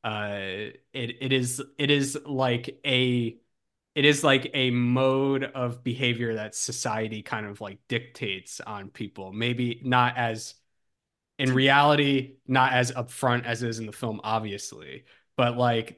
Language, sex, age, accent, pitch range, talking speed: English, male, 20-39, American, 110-130 Hz, 150 wpm